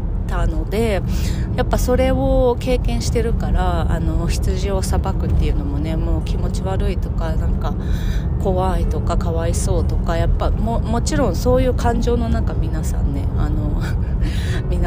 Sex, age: female, 30-49